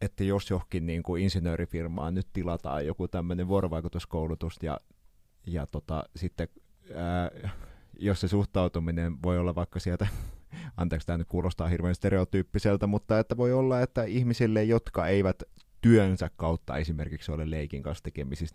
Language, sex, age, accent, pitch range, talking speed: Finnish, male, 30-49, native, 80-100 Hz, 140 wpm